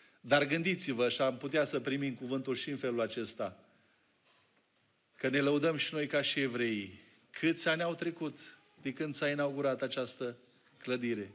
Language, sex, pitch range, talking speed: Romanian, male, 155-215 Hz, 160 wpm